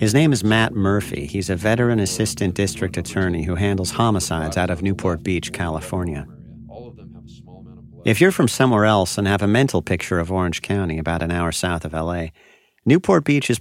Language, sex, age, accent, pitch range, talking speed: English, male, 50-69, American, 90-115 Hz, 180 wpm